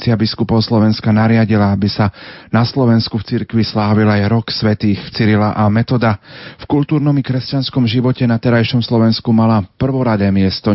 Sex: male